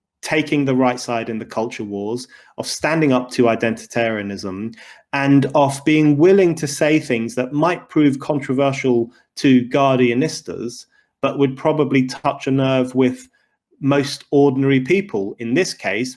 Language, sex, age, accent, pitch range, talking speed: English, male, 30-49, British, 125-150 Hz, 145 wpm